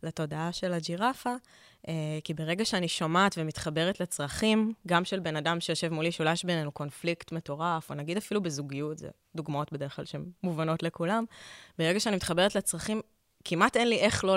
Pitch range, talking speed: 155-190 Hz, 165 wpm